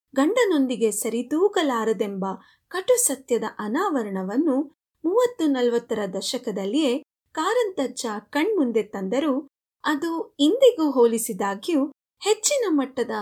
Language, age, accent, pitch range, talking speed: Kannada, 30-49, native, 225-325 Hz, 70 wpm